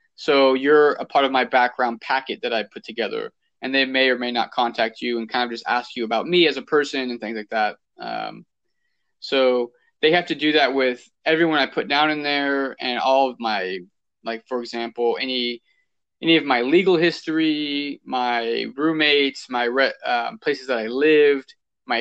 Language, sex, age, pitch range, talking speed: English, male, 20-39, 120-155 Hz, 195 wpm